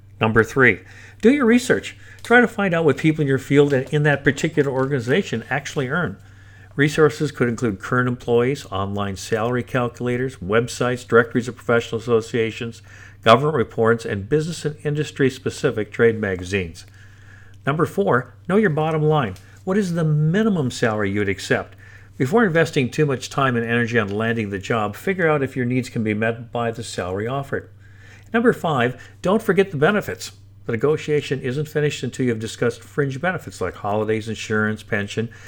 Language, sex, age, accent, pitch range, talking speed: English, male, 50-69, American, 105-145 Hz, 165 wpm